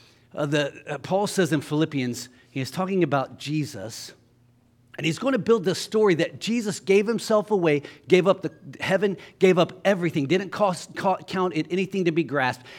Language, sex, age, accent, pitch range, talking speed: English, male, 40-59, American, 145-190 Hz, 190 wpm